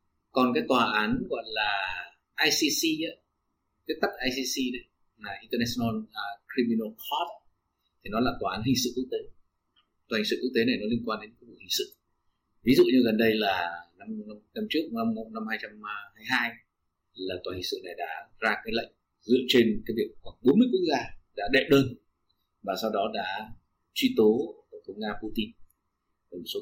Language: Vietnamese